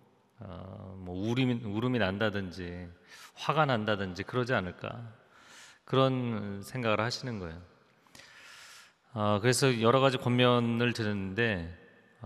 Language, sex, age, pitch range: Korean, male, 30-49, 105-130 Hz